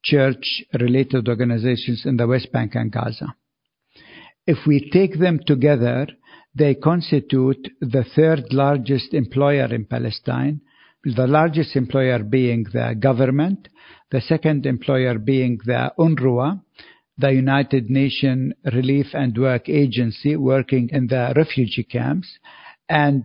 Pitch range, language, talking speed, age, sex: 130-155 Hz, English, 120 wpm, 60-79, male